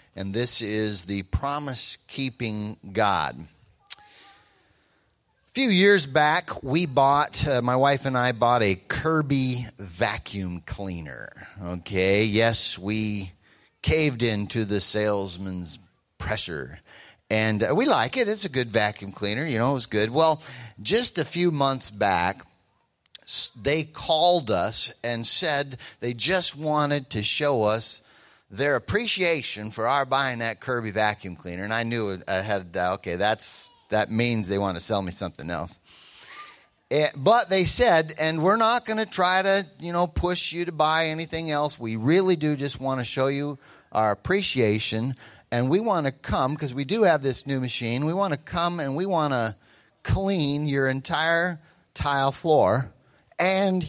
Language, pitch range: English, 105-155 Hz